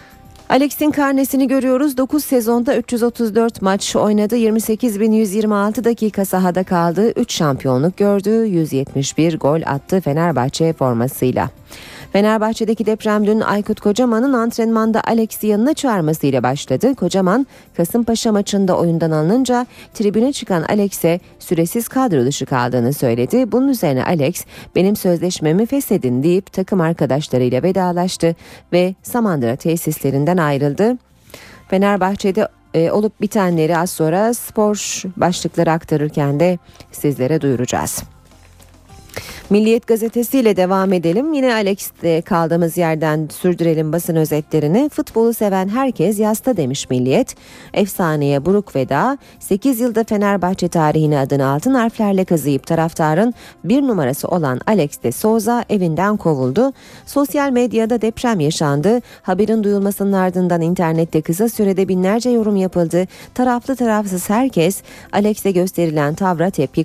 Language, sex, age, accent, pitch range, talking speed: Turkish, female, 30-49, native, 160-225 Hz, 115 wpm